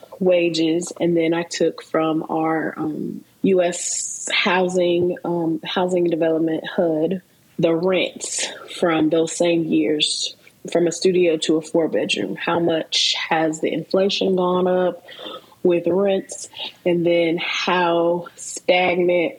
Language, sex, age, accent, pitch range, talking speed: English, female, 20-39, American, 160-180 Hz, 125 wpm